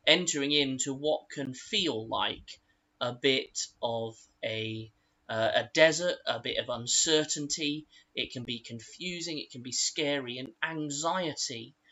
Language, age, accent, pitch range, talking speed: English, 20-39, British, 125-155 Hz, 135 wpm